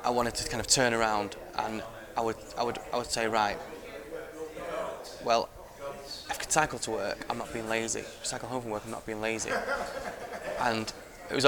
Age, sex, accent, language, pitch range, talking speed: 20-39, male, British, English, 105-120 Hz, 205 wpm